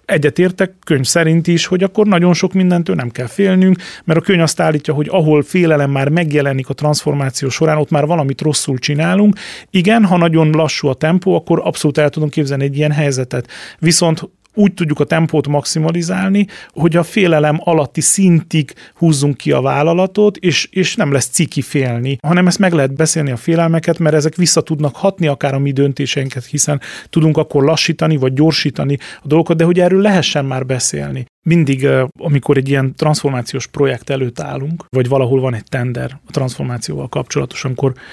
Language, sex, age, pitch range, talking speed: Hungarian, male, 40-59, 135-170 Hz, 180 wpm